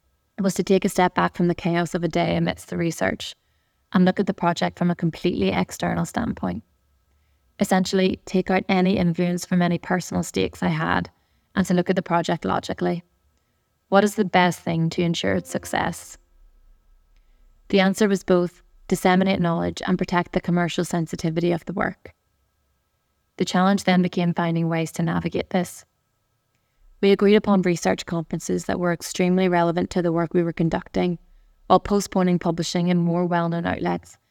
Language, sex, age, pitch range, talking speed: English, female, 20-39, 160-185 Hz, 170 wpm